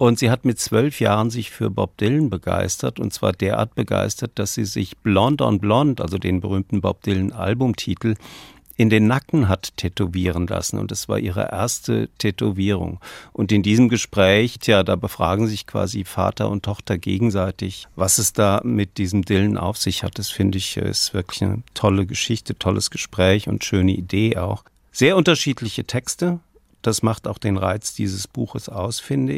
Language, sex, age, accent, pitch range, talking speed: German, male, 50-69, German, 95-120 Hz, 175 wpm